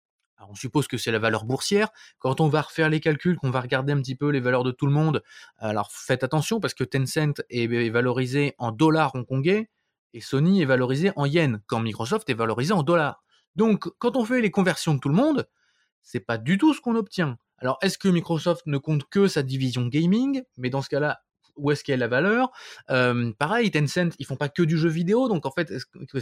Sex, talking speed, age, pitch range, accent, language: male, 235 wpm, 20-39, 130-180 Hz, French, French